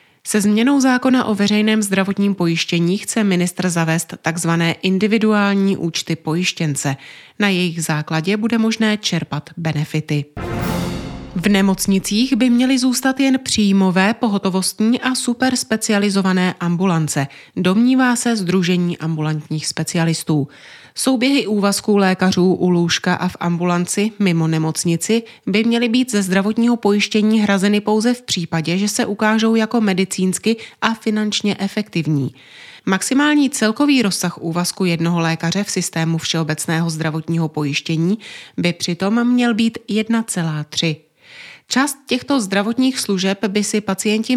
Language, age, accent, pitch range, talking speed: Czech, 30-49, native, 165-220 Hz, 120 wpm